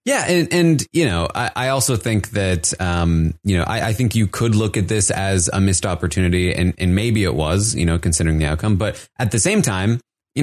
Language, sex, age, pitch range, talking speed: English, male, 30-49, 85-115 Hz, 235 wpm